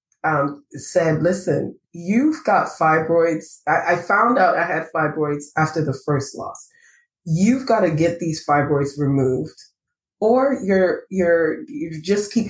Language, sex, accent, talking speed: English, female, American, 145 wpm